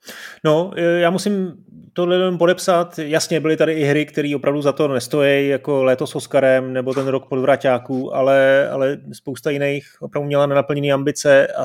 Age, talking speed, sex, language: 30-49, 160 wpm, male, Czech